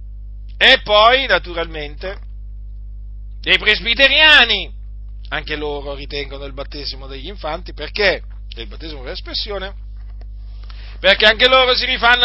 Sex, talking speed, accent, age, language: male, 110 wpm, native, 50-69, Italian